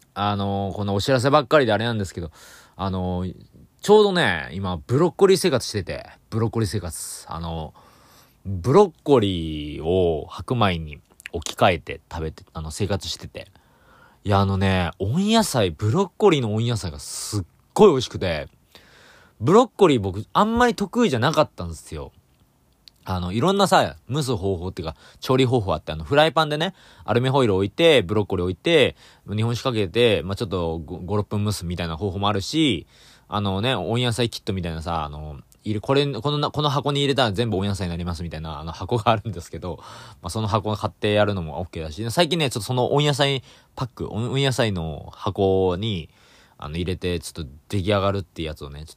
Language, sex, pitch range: Japanese, male, 85-130 Hz